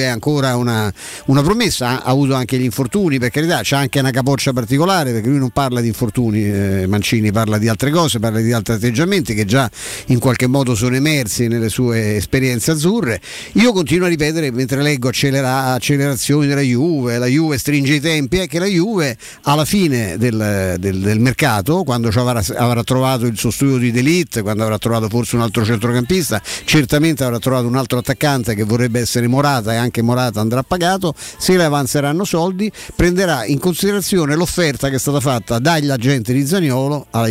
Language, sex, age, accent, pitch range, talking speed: Italian, male, 50-69, native, 120-150 Hz, 190 wpm